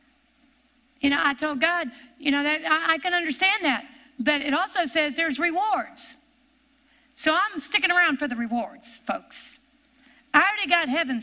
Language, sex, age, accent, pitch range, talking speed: English, female, 50-69, American, 245-305 Hz, 160 wpm